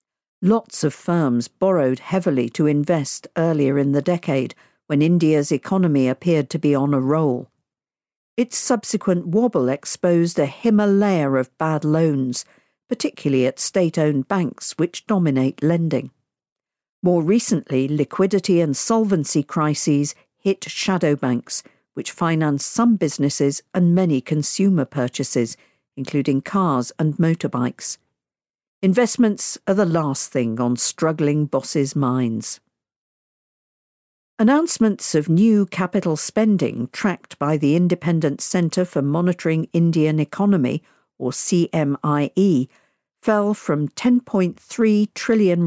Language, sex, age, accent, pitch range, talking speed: English, female, 50-69, British, 140-190 Hz, 115 wpm